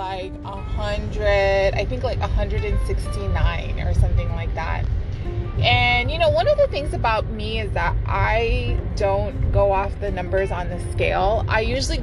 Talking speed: 165 wpm